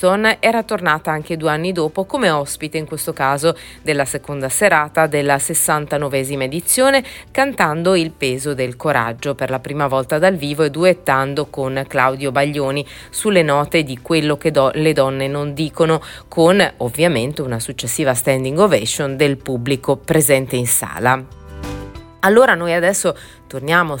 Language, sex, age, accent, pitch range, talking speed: Italian, female, 30-49, native, 135-165 Hz, 140 wpm